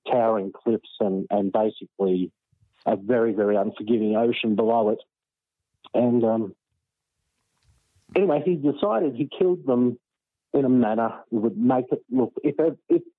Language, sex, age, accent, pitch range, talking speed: English, male, 50-69, Australian, 105-125 Hz, 135 wpm